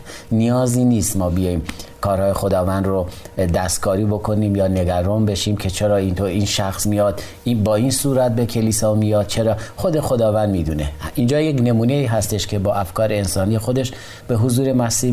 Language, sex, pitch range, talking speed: Persian, male, 95-120 Hz, 165 wpm